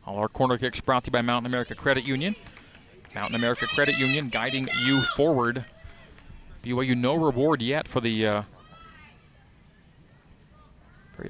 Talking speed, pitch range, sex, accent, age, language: 145 wpm, 115-145 Hz, male, American, 40-59, English